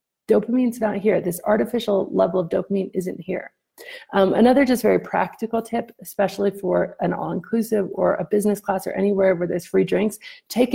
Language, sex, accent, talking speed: English, female, American, 175 wpm